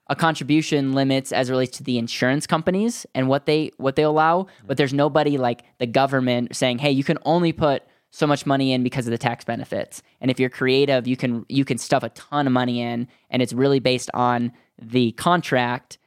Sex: male